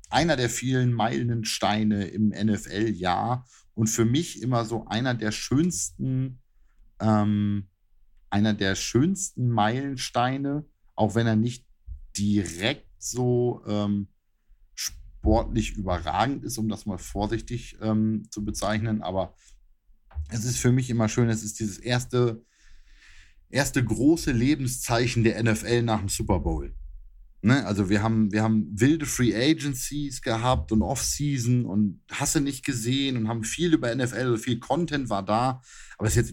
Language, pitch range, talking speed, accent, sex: German, 105-125 Hz, 140 wpm, German, male